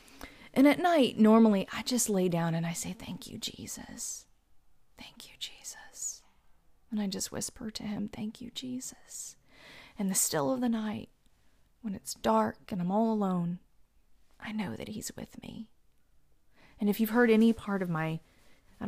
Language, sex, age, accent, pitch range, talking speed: English, female, 30-49, American, 155-205 Hz, 170 wpm